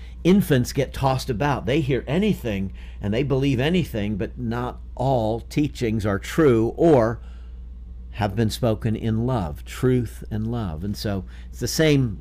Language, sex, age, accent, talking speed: English, male, 50-69, American, 150 wpm